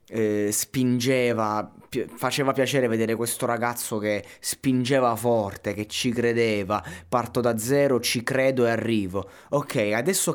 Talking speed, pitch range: 120 wpm, 100-125 Hz